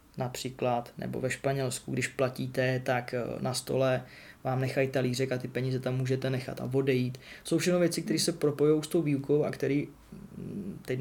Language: Czech